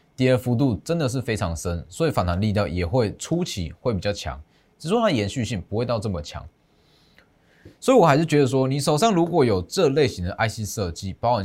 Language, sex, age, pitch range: Chinese, male, 20-39, 100-145 Hz